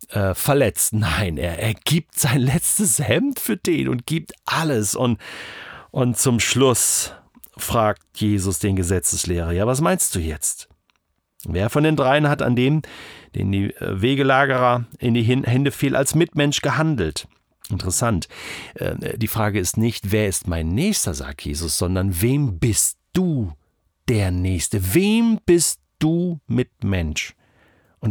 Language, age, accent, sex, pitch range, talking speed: German, 40-59, German, male, 105-155 Hz, 140 wpm